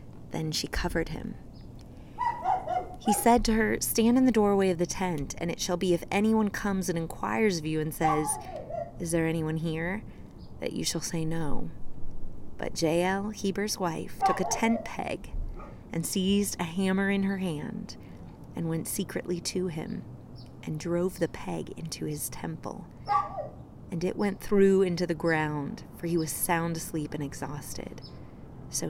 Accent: American